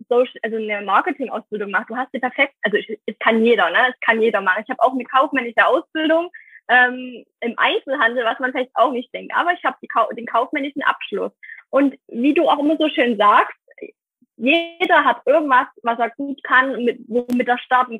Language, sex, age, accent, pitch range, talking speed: German, female, 20-39, German, 230-280 Hz, 195 wpm